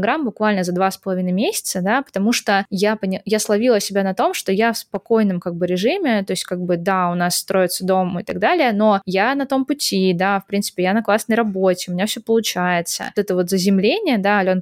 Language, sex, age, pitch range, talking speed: Russian, female, 20-39, 185-230 Hz, 235 wpm